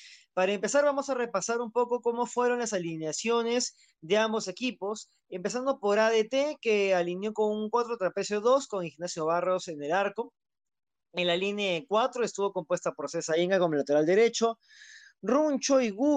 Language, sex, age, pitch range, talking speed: Spanish, male, 20-39, 180-245 Hz, 165 wpm